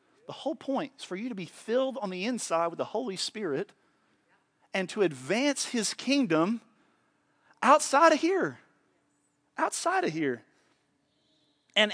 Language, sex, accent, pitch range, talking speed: English, male, American, 145-240 Hz, 140 wpm